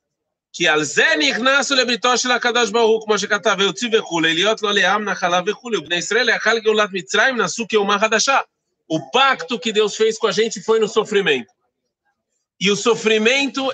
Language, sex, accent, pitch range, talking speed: Portuguese, male, Brazilian, 195-240 Hz, 60 wpm